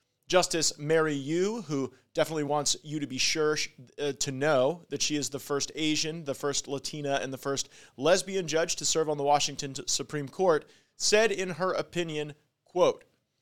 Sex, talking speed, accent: male, 175 wpm, American